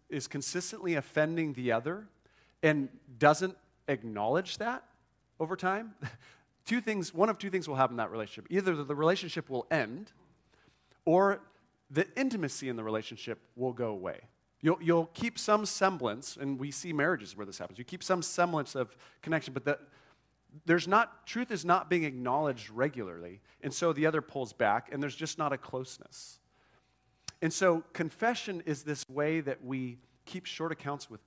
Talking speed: 170 wpm